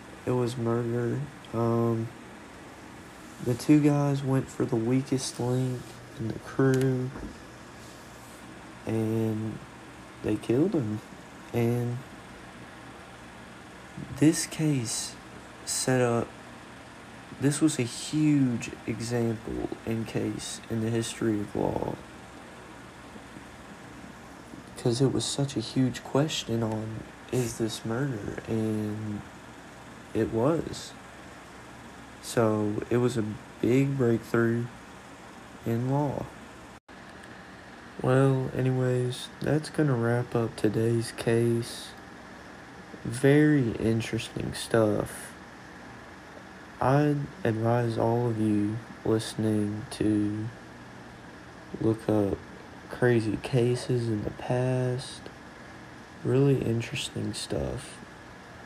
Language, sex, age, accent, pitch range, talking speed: English, male, 30-49, American, 110-125 Hz, 90 wpm